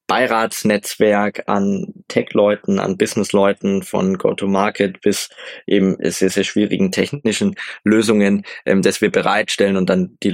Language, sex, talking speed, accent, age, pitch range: German, male, 120 wpm, German, 20-39, 100-135 Hz